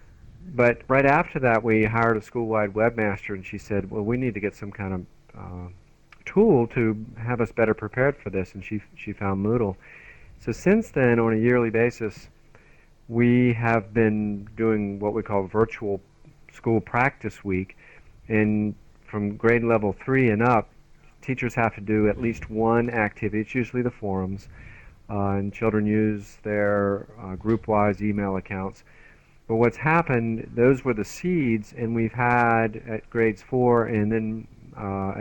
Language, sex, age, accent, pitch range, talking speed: English, male, 40-59, American, 100-120 Hz, 165 wpm